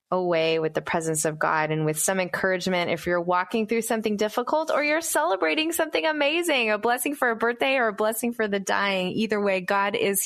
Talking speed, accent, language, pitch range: 210 wpm, American, English, 160-230 Hz